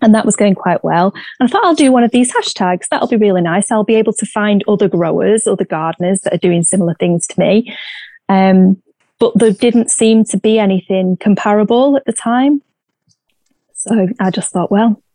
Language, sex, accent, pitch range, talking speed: English, female, British, 185-225 Hz, 205 wpm